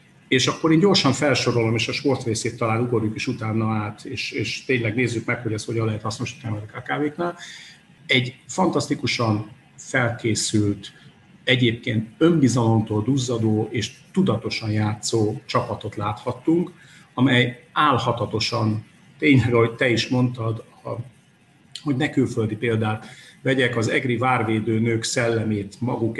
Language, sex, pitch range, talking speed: English, male, 110-130 Hz, 130 wpm